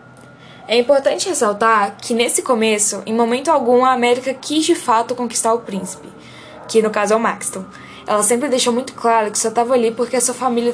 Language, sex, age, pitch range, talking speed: Portuguese, female, 10-29, 220-255 Hz, 200 wpm